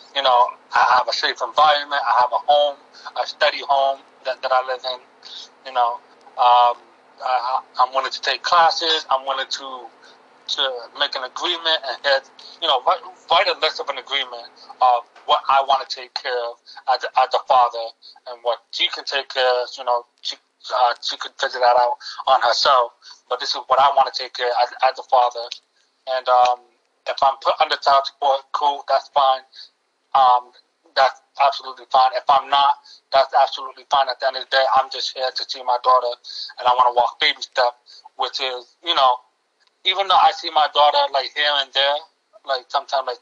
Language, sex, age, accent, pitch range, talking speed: English, male, 30-49, American, 125-140 Hz, 205 wpm